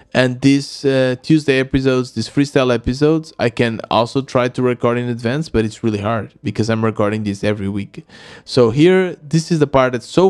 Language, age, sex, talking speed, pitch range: English, 20-39, male, 190 wpm, 110-135 Hz